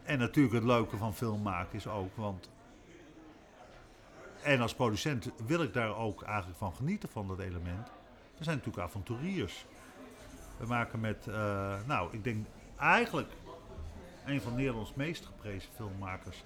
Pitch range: 100-140 Hz